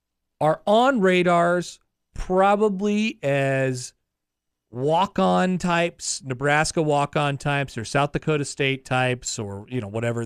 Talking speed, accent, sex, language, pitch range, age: 110 wpm, American, male, English, 110-145 Hz, 40-59